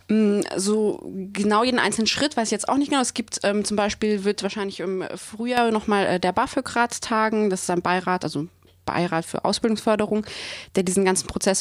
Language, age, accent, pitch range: German, 20-39, German, 180-210 Hz